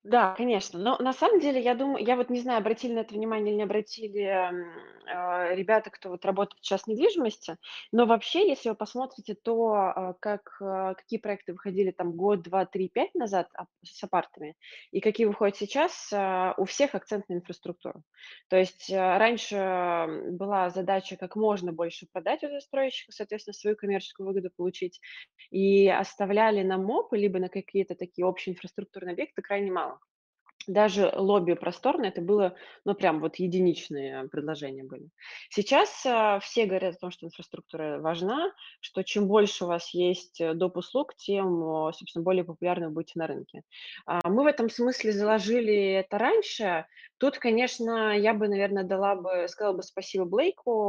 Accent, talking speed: native, 165 wpm